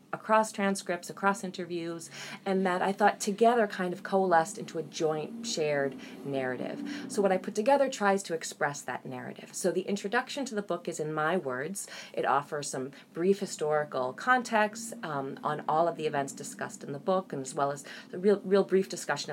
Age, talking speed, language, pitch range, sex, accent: 30-49, 195 wpm, English, 150-210 Hz, female, American